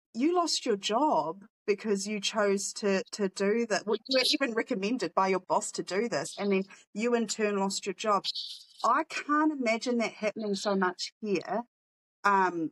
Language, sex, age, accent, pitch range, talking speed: English, female, 30-49, Australian, 175-215 Hz, 180 wpm